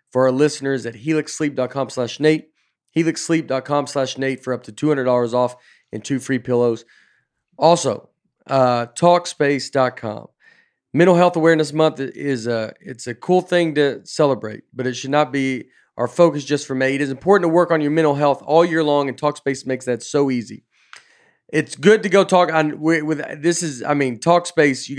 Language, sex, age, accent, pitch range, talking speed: English, male, 40-59, American, 125-150 Hz, 175 wpm